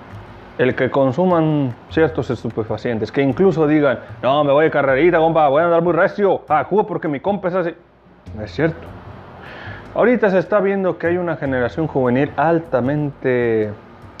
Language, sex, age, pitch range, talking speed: Spanish, male, 30-49, 110-155 Hz, 160 wpm